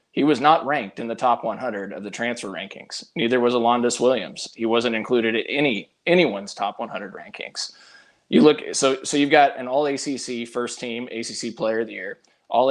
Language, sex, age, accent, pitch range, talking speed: English, male, 20-39, American, 110-130 Hz, 200 wpm